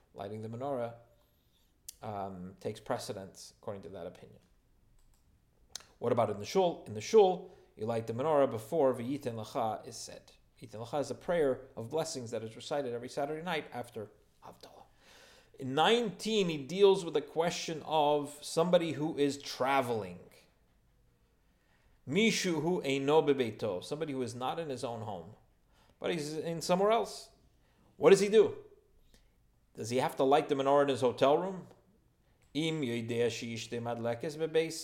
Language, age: English, 30-49